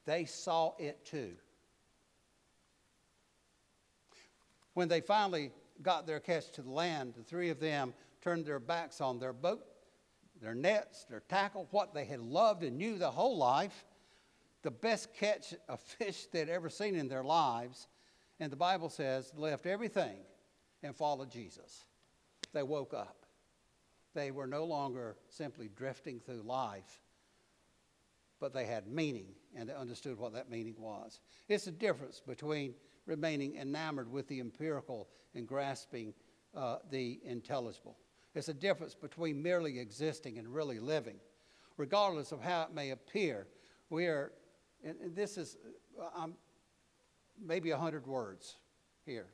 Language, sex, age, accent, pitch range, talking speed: English, male, 60-79, American, 130-170 Hz, 145 wpm